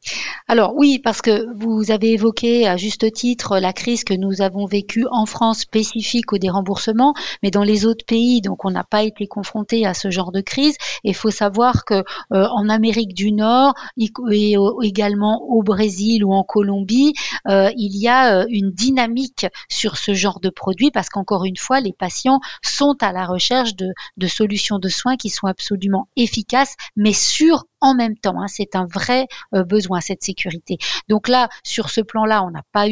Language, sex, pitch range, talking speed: French, female, 195-240 Hz, 195 wpm